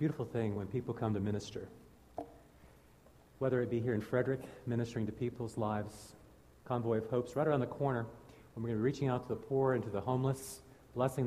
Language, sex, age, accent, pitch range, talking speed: English, male, 50-69, American, 105-155 Hz, 210 wpm